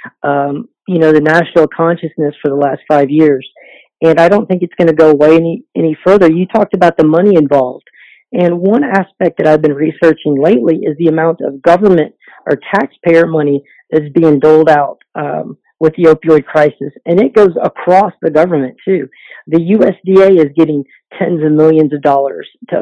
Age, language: 40-59, English